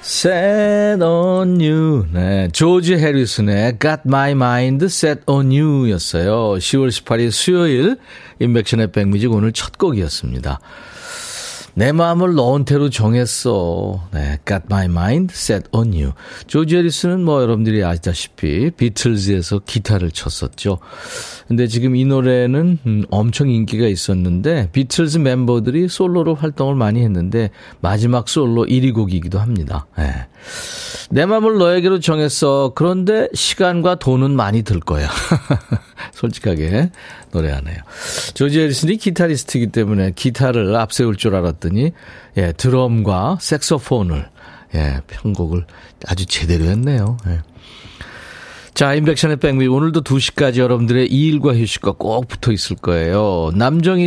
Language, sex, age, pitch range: Korean, male, 40-59, 100-150 Hz